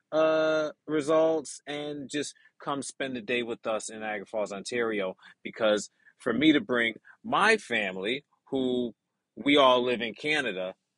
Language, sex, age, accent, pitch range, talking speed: English, male, 30-49, American, 115-150 Hz, 150 wpm